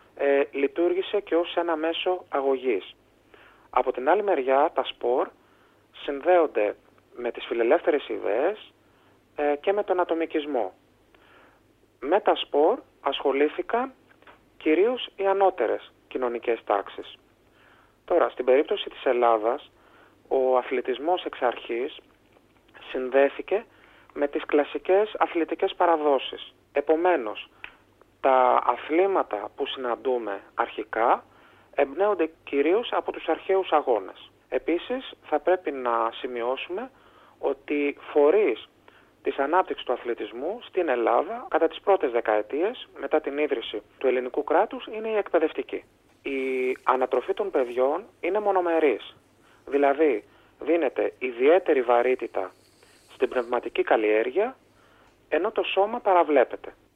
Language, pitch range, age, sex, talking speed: Greek, 140-195 Hz, 30-49, male, 105 wpm